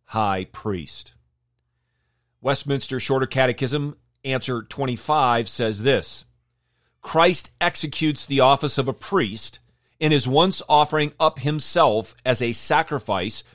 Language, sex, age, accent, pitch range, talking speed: English, male, 40-59, American, 115-155 Hz, 110 wpm